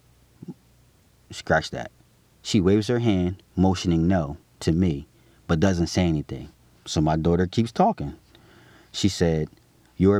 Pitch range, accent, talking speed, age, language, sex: 80-100 Hz, American, 130 wpm, 30-49, English, male